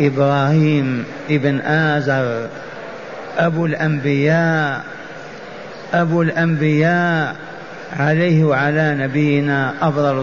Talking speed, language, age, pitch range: 65 wpm, Arabic, 50-69, 145-170 Hz